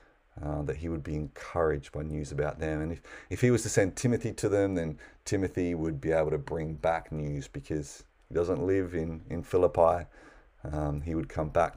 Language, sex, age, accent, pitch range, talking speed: English, male, 30-49, Australian, 80-100 Hz, 210 wpm